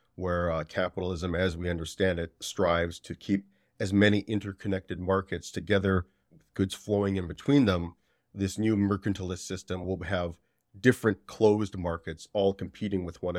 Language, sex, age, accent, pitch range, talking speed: English, male, 30-49, American, 95-105 Hz, 150 wpm